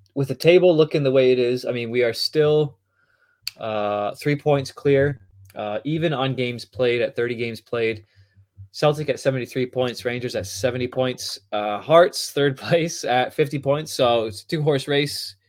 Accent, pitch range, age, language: American, 105-140 Hz, 20-39, English